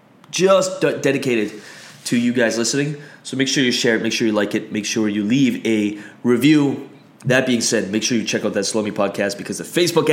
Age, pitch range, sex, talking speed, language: 20-39, 105-135 Hz, male, 225 wpm, English